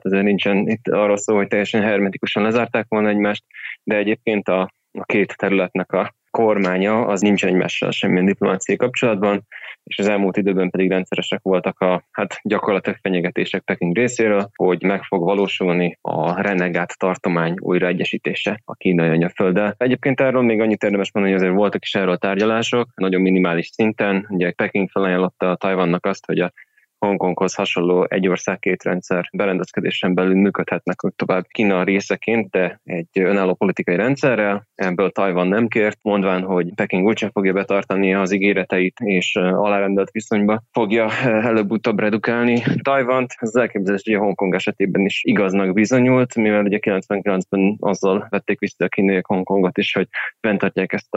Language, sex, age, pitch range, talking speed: Hungarian, male, 20-39, 95-105 Hz, 150 wpm